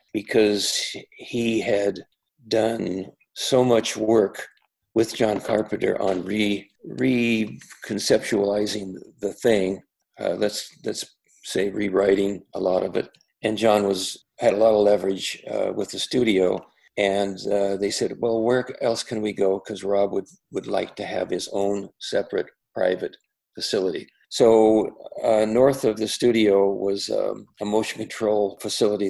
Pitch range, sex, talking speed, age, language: 100-110 Hz, male, 145 wpm, 50-69, English